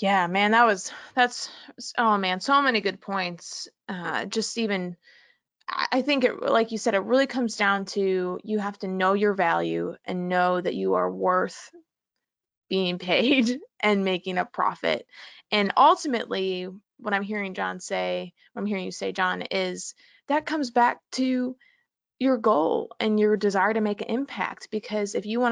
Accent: American